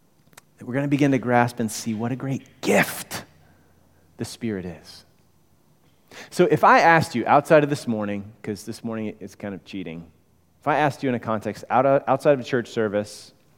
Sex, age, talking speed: male, 30-49, 190 wpm